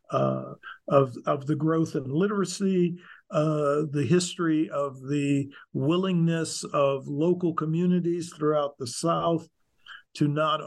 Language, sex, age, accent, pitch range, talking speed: English, male, 50-69, American, 145-175 Hz, 120 wpm